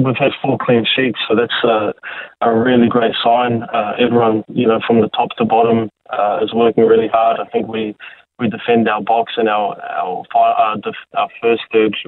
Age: 20-39